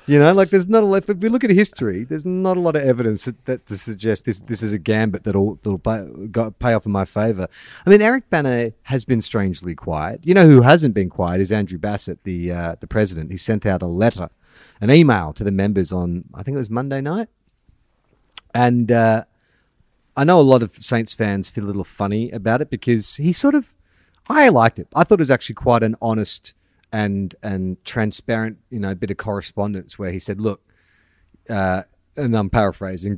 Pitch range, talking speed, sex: 100-135 Hz, 215 wpm, male